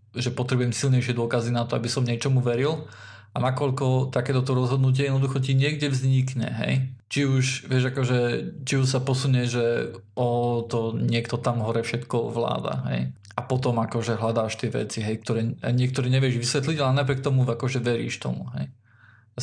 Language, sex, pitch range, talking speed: Slovak, male, 115-130 Hz, 170 wpm